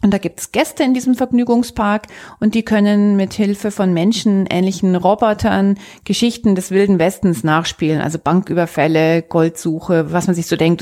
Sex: female